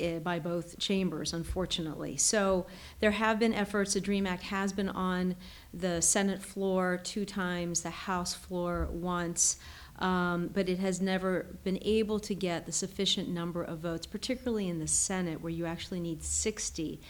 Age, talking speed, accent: 40-59, 165 wpm, American